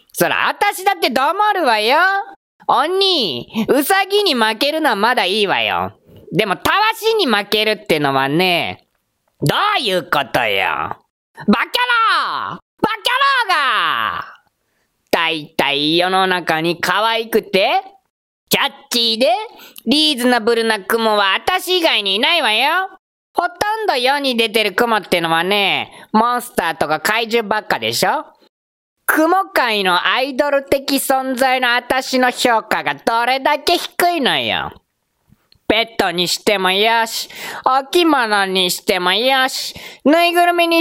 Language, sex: Japanese, female